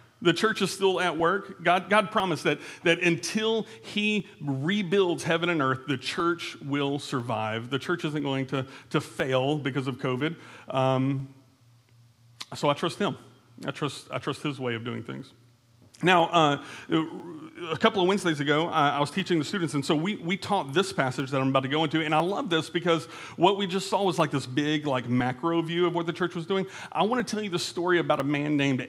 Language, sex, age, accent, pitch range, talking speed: English, male, 40-59, American, 135-175 Hz, 215 wpm